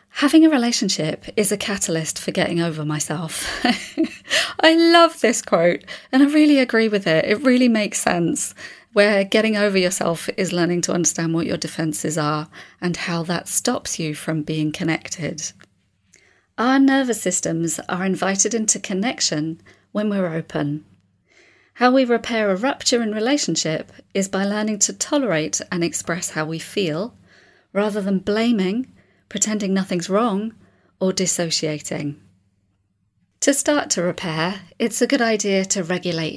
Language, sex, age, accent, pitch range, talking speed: English, female, 30-49, British, 160-220 Hz, 145 wpm